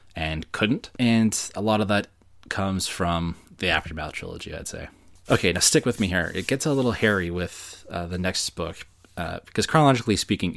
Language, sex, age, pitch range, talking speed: English, male, 20-39, 85-95 Hz, 195 wpm